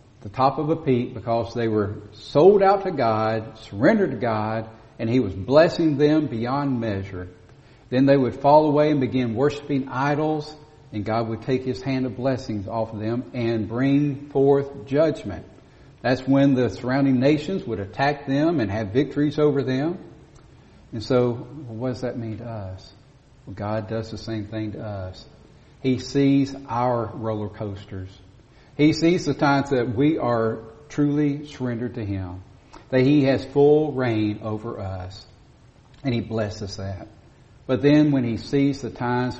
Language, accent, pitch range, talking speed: English, American, 110-140 Hz, 165 wpm